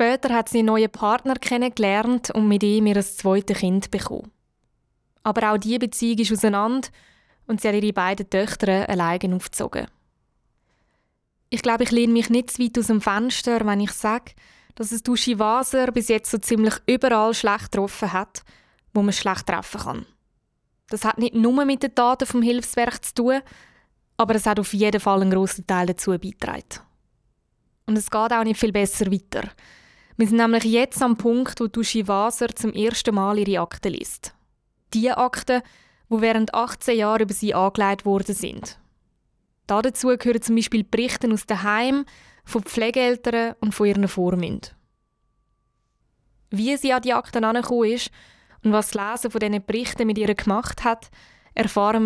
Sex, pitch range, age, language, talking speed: female, 205-235 Hz, 20-39, German, 170 wpm